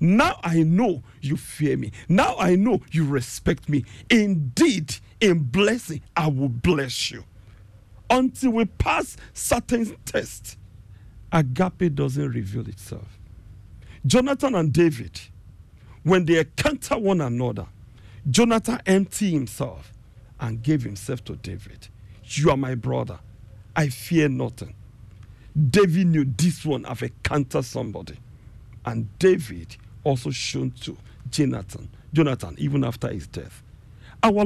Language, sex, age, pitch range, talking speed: English, male, 50-69, 105-160 Hz, 120 wpm